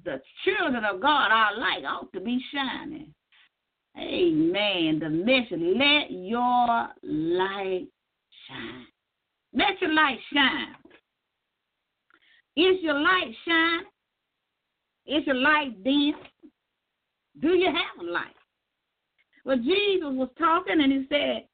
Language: English